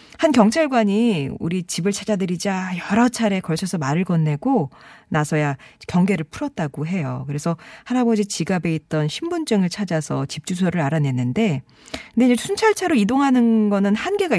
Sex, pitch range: female, 160-220 Hz